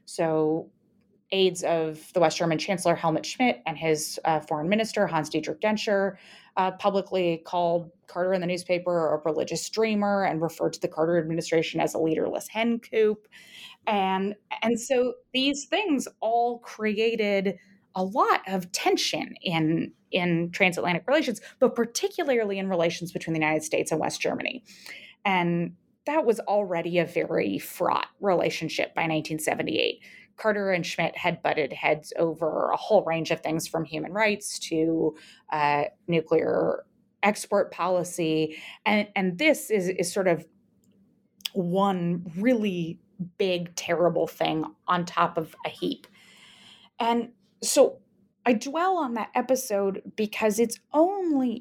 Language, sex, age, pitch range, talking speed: English, female, 20-39, 170-220 Hz, 140 wpm